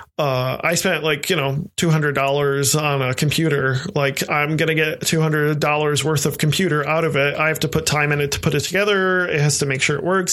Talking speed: 250 wpm